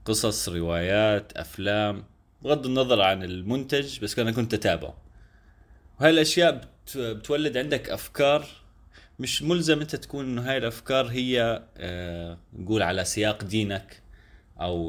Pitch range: 90-130 Hz